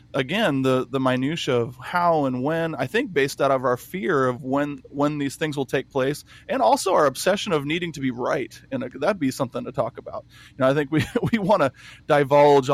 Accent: American